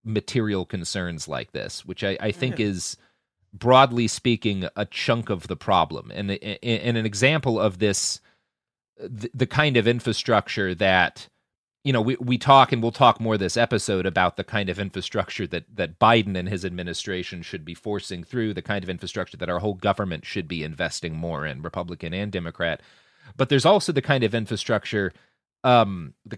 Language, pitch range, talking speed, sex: English, 90-115 Hz, 175 wpm, male